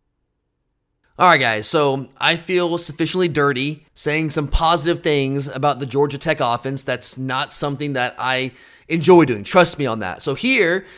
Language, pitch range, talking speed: English, 135-170 Hz, 165 wpm